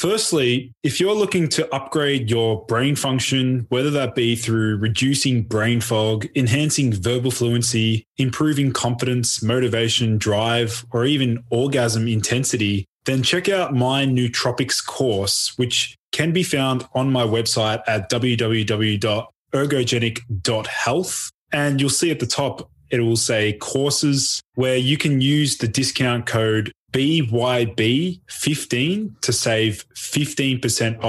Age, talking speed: 20-39, 120 wpm